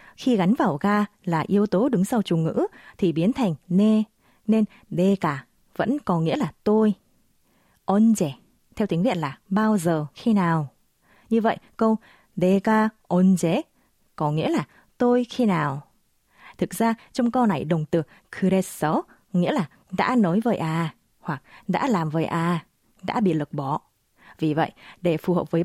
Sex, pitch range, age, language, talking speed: female, 165-220 Hz, 20-39, Vietnamese, 170 wpm